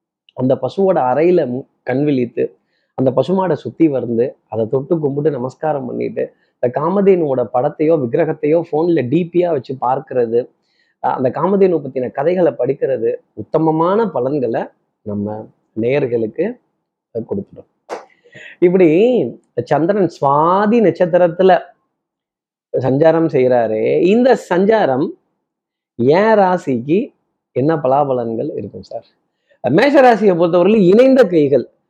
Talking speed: 90 wpm